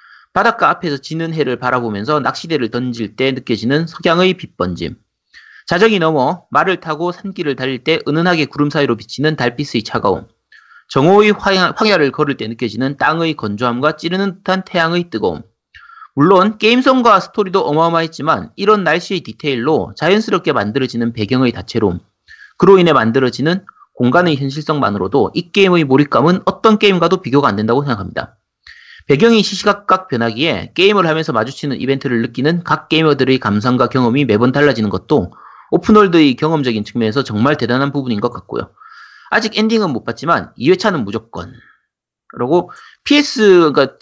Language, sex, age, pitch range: Korean, male, 40-59, 130-195 Hz